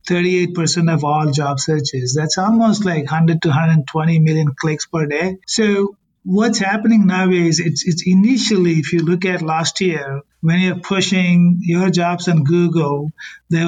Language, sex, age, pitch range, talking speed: English, male, 50-69, 160-185 Hz, 160 wpm